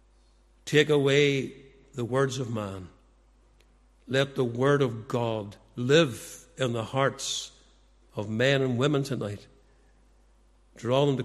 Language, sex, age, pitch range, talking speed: English, male, 60-79, 110-140 Hz, 125 wpm